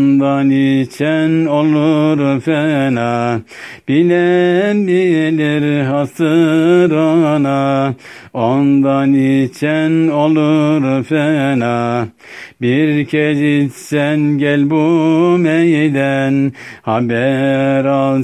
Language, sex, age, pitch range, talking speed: Turkish, male, 60-79, 135-160 Hz, 65 wpm